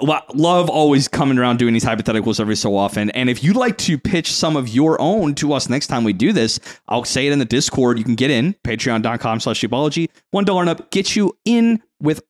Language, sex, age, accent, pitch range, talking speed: English, male, 30-49, American, 120-180 Hz, 225 wpm